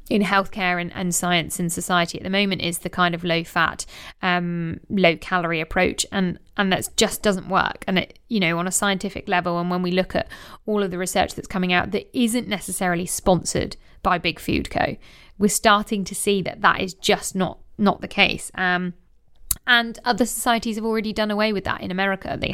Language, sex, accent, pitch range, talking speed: English, female, British, 180-220 Hz, 205 wpm